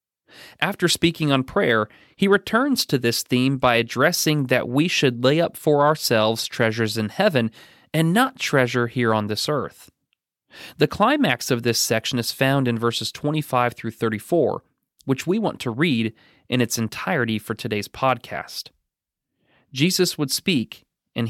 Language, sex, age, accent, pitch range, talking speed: English, male, 30-49, American, 120-155 Hz, 155 wpm